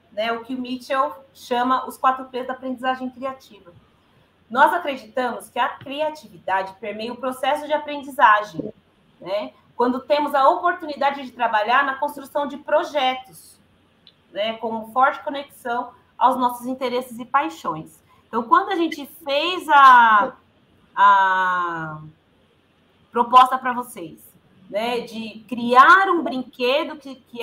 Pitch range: 235-305 Hz